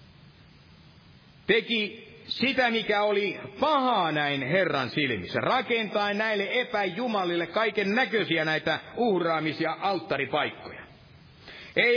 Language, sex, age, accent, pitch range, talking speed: Finnish, male, 60-79, native, 155-225 Hz, 85 wpm